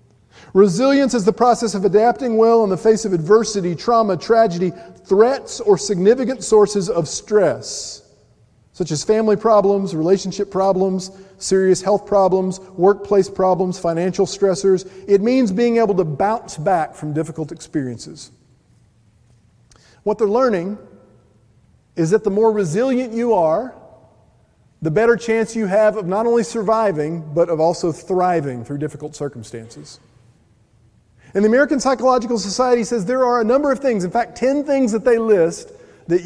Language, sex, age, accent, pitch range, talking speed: English, male, 40-59, American, 155-230 Hz, 145 wpm